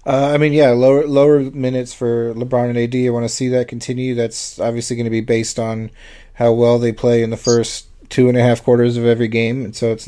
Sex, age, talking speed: male, 30-49, 250 wpm